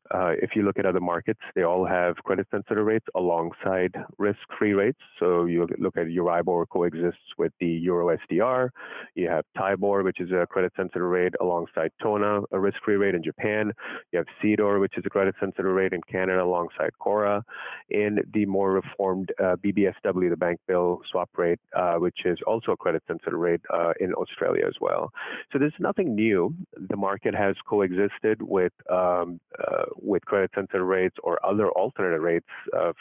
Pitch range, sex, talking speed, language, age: 90-105 Hz, male, 185 wpm, English, 30-49